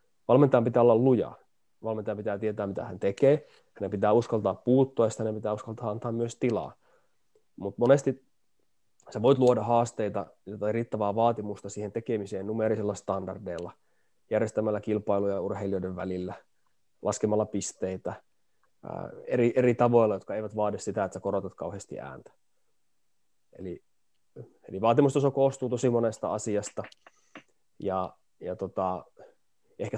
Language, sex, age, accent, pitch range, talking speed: Finnish, male, 20-39, native, 100-115 Hz, 130 wpm